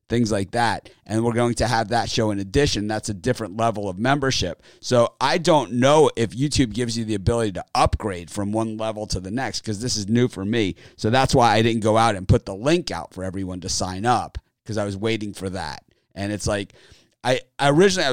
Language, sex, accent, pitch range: English, male, American, 100-120 Hz